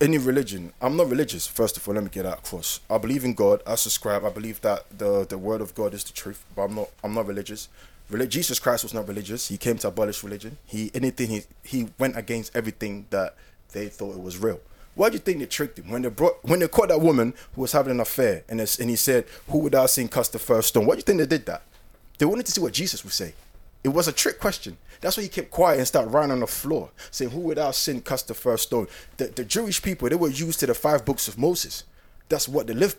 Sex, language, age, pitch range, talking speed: male, English, 20-39, 110-160 Hz, 270 wpm